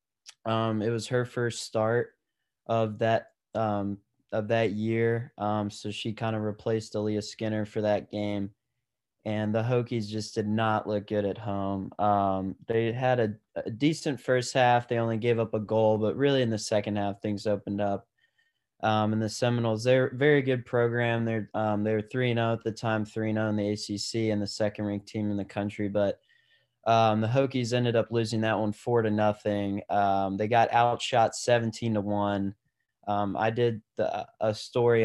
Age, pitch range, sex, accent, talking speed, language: 20-39, 105-115 Hz, male, American, 185 wpm, English